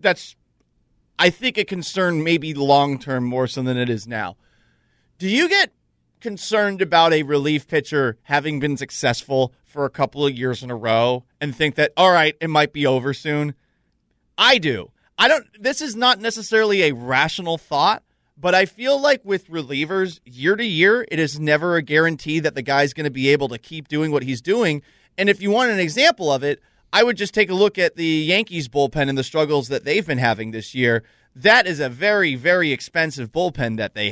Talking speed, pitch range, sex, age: 205 wpm, 130-180 Hz, male, 30-49